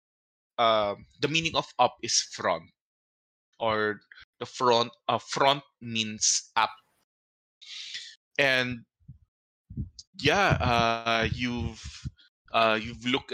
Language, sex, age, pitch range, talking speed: English, male, 20-39, 100-120 Hz, 100 wpm